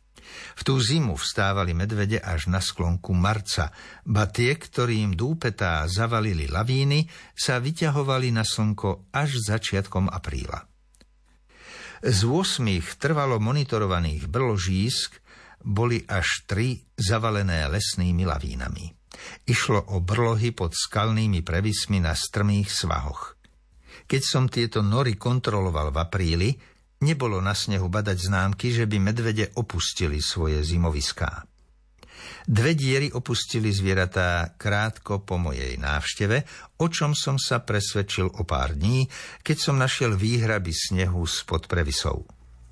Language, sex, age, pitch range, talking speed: Slovak, male, 60-79, 90-120 Hz, 115 wpm